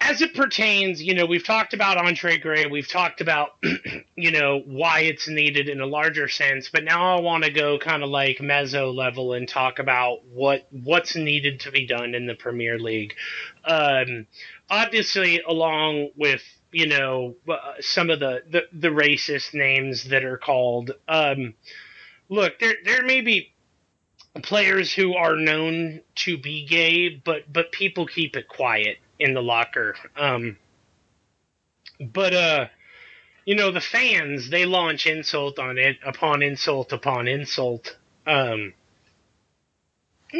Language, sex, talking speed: English, male, 150 wpm